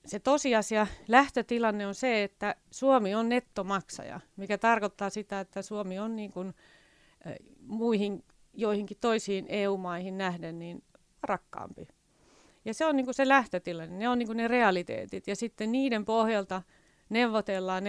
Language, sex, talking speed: Finnish, female, 140 wpm